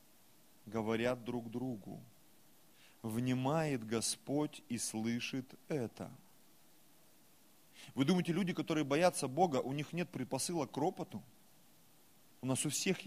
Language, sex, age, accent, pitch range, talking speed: Russian, male, 30-49, native, 125-195 Hz, 110 wpm